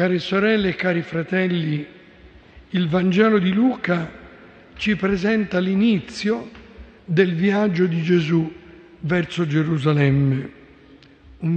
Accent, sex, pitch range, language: native, male, 165-195 Hz, Italian